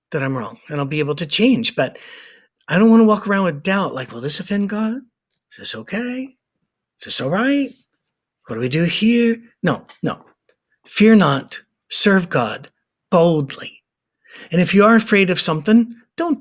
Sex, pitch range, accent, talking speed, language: male, 150-215 Hz, American, 185 wpm, English